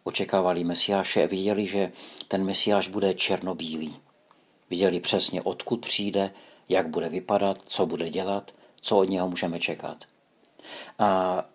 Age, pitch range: 50-69, 90-110 Hz